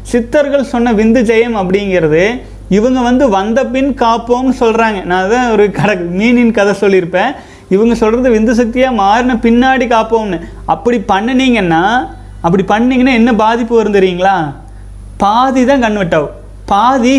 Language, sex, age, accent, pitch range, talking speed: Tamil, male, 30-49, native, 190-245 Hz, 125 wpm